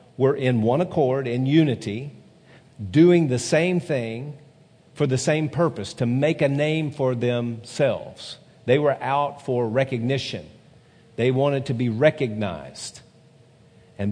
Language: English